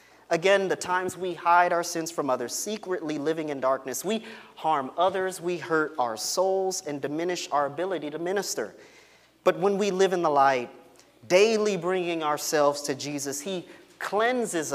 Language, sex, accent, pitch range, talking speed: English, male, American, 140-185 Hz, 165 wpm